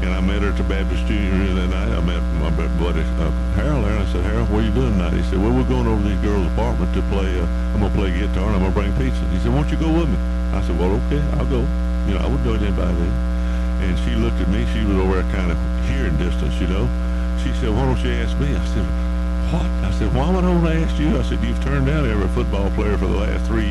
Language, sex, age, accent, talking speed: English, male, 60-79, American, 300 wpm